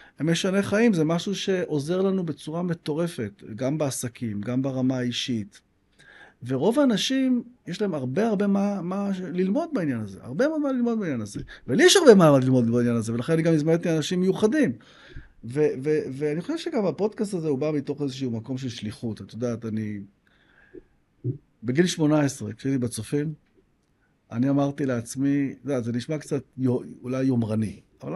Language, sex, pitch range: Hebrew, male, 130-205 Hz